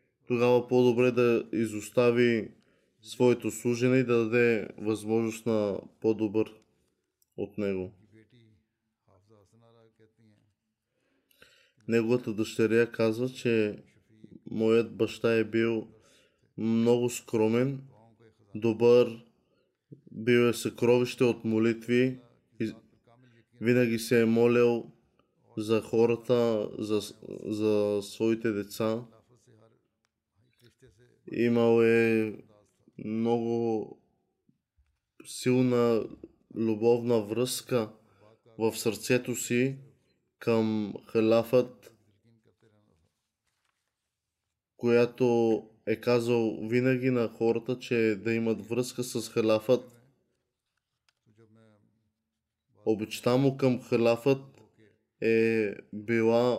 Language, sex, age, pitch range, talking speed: Bulgarian, male, 20-39, 110-120 Hz, 75 wpm